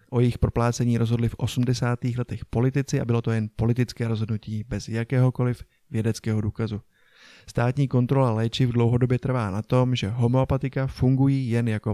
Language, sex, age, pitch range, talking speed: Czech, male, 20-39, 115-130 Hz, 150 wpm